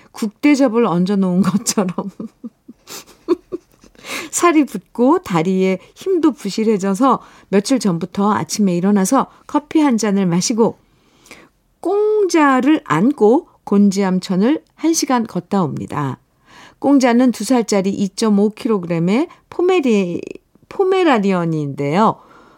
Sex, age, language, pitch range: female, 50-69, Korean, 185-270 Hz